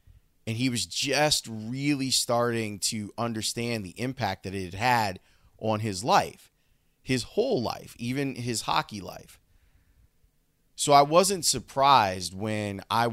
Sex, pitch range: male, 100-125 Hz